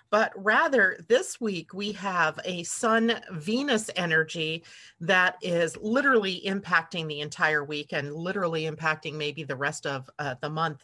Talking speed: 145 wpm